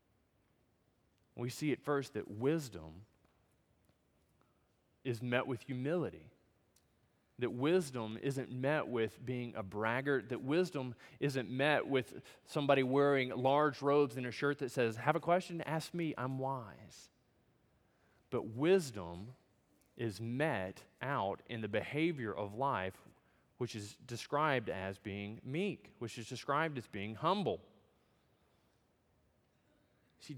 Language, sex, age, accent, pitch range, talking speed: English, male, 20-39, American, 110-145 Hz, 120 wpm